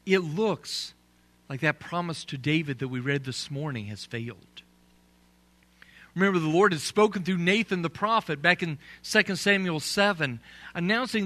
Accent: American